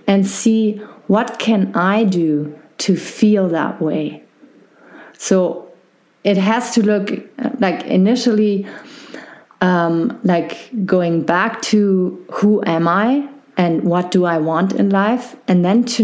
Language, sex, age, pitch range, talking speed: English, female, 30-49, 170-210 Hz, 130 wpm